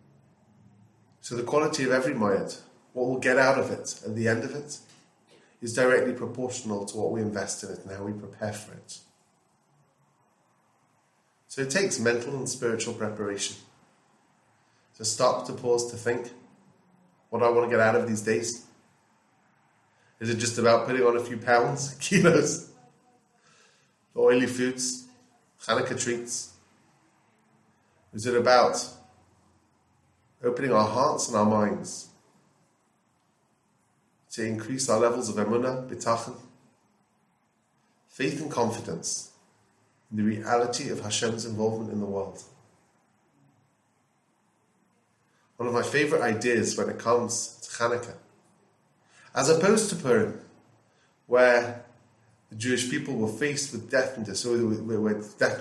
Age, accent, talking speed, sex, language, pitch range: 30-49, British, 135 wpm, male, English, 110-125 Hz